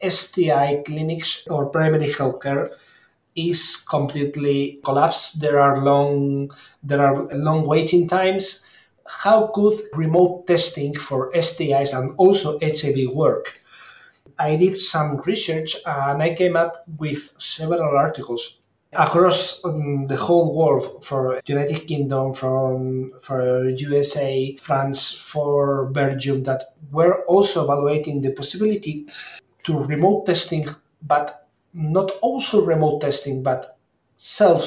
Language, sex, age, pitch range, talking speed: English, male, 30-49, 140-180 Hz, 115 wpm